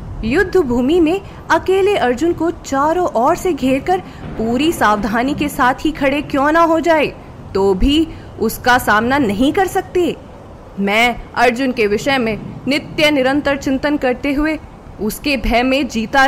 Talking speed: 150 wpm